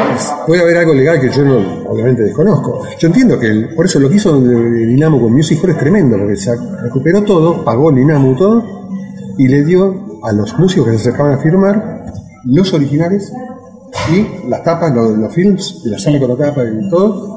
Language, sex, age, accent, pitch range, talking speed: Spanish, male, 40-59, Argentinian, 120-170 Hz, 220 wpm